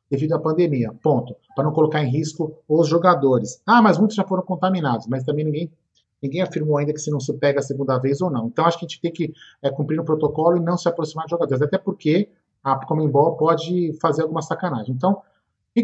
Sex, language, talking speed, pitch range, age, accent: male, Portuguese, 225 wpm, 145-180 Hz, 40-59, Brazilian